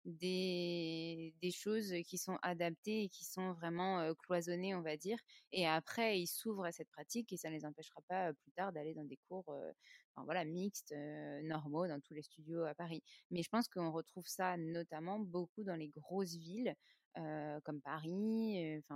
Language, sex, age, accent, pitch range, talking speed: French, female, 20-39, French, 155-180 Hz, 200 wpm